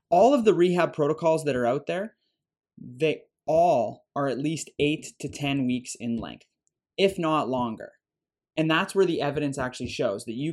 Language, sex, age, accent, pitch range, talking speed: English, male, 20-39, American, 125-150 Hz, 180 wpm